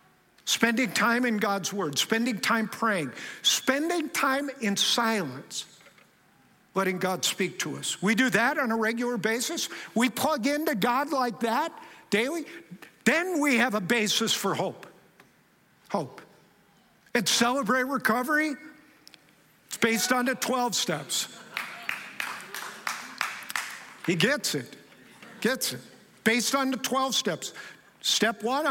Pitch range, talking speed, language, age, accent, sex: 210-260 Hz, 125 wpm, English, 50-69, American, male